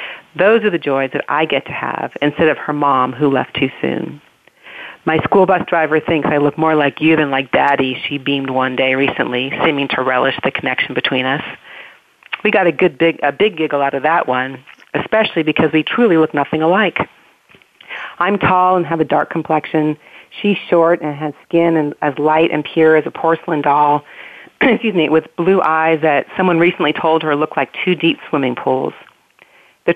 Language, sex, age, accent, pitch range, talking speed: English, female, 40-59, American, 145-175 Hz, 200 wpm